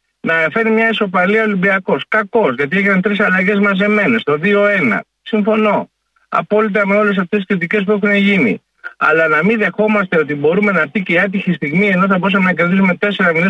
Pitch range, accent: 170-225 Hz, native